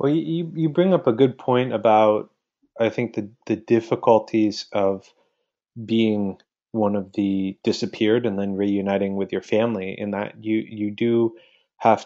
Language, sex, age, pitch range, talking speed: English, male, 30-49, 100-115 Hz, 160 wpm